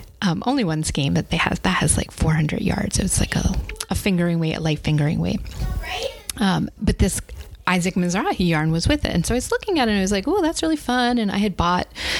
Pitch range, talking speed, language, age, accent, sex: 170-195 Hz, 245 wpm, English, 30-49, American, female